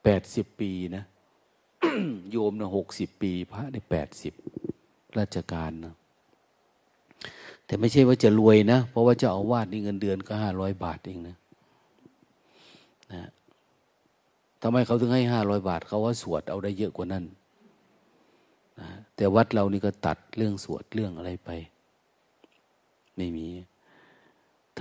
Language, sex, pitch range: Thai, male, 90-110 Hz